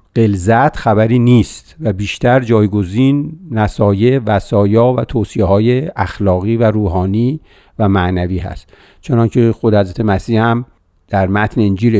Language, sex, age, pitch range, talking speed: Persian, male, 50-69, 105-135 Hz, 125 wpm